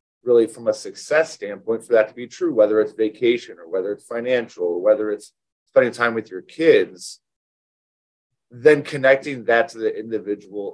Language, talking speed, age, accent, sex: English, 175 wpm, 30-49, American, male